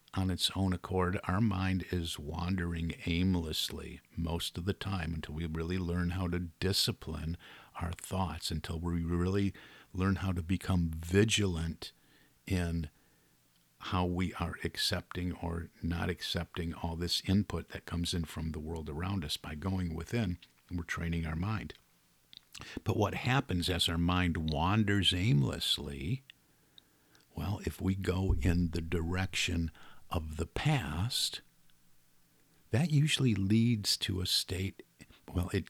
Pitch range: 85-100 Hz